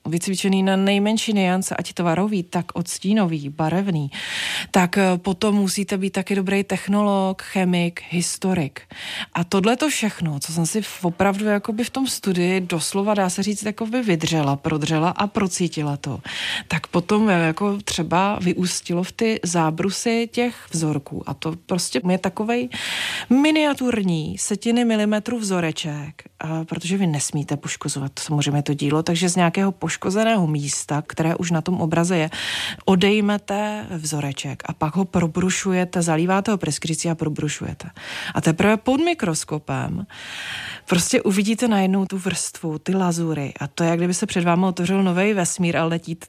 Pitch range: 165-205 Hz